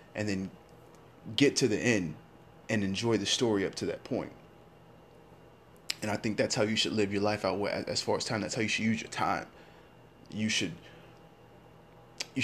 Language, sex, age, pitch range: English, male, 30-49, 105-130 Hz